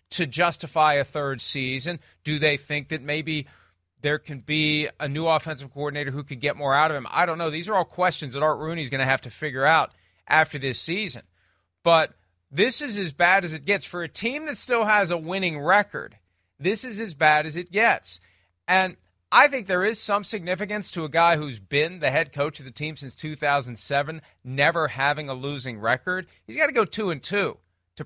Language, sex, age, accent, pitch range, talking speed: English, male, 40-59, American, 140-195 Hz, 215 wpm